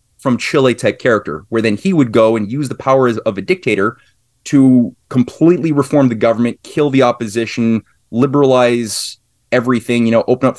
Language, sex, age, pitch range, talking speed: English, male, 30-49, 115-145 Hz, 170 wpm